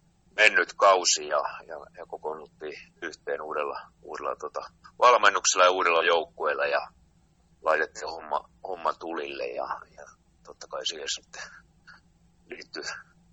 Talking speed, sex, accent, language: 115 wpm, male, native, Finnish